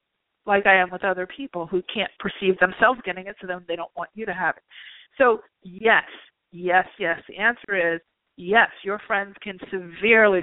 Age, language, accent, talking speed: 40-59, English, American, 190 wpm